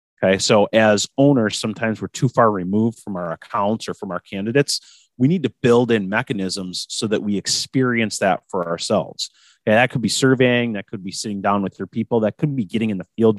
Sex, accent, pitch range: male, American, 95-125 Hz